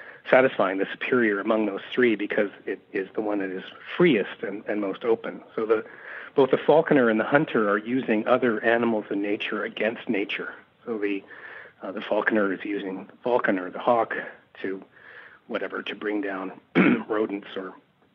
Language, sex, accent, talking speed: English, male, American, 170 wpm